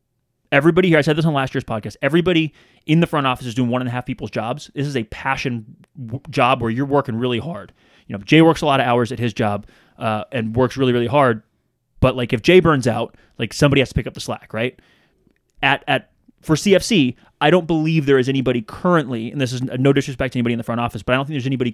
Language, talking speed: English, 255 wpm